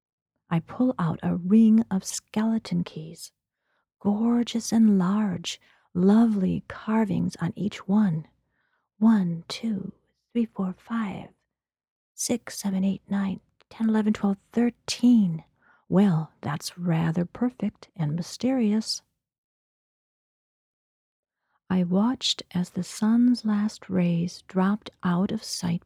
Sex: female